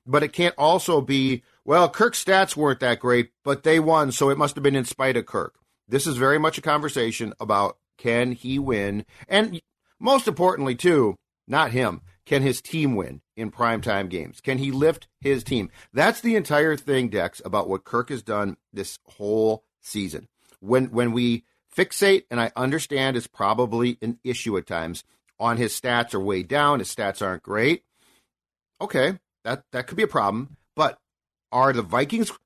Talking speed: 180 wpm